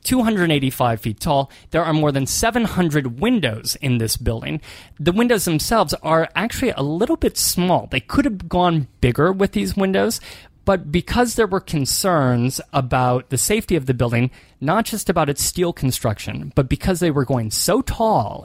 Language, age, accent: English, 30-49, American